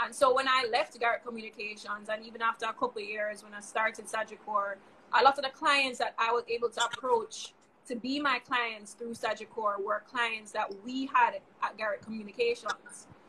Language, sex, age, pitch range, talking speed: English, female, 20-39, 220-270 Hz, 195 wpm